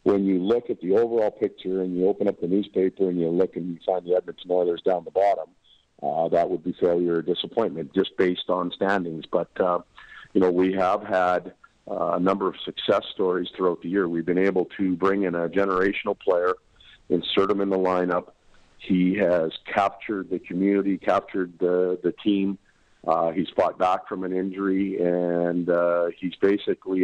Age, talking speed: 50-69, 190 wpm